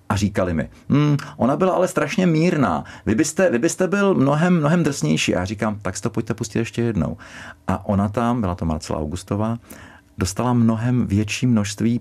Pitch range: 100-135 Hz